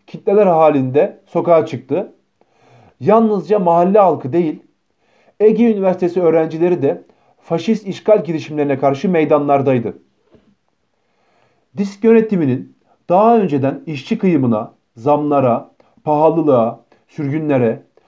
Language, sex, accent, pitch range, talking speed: Turkish, male, native, 140-200 Hz, 85 wpm